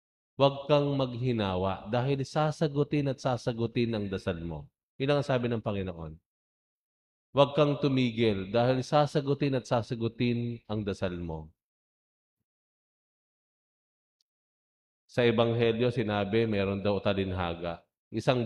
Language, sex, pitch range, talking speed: English, male, 95-130 Hz, 105 wpm